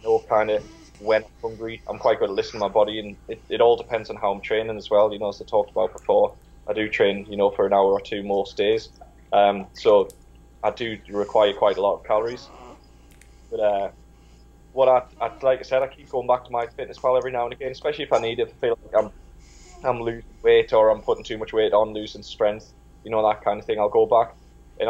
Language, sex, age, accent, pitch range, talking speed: English, male, 10-29, British, 100-125 Hz, 250 wpm